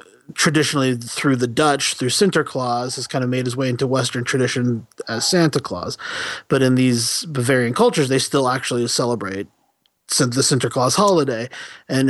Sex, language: male, English